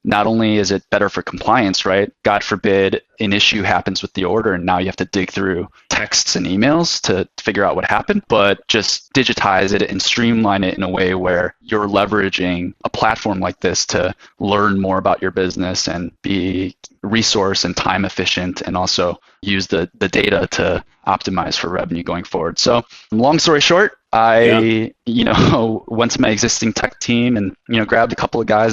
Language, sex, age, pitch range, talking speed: English, male, 20-39, 95-110 Hz, 195 wpm